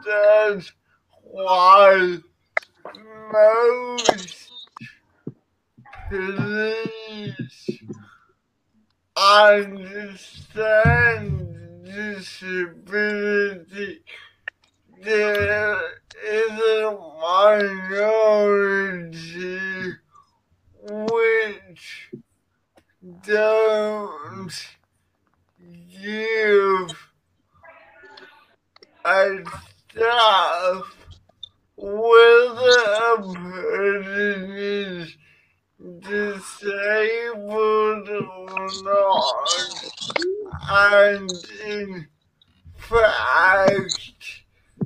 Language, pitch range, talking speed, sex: English, 190-215 Hz, 35 wpm, male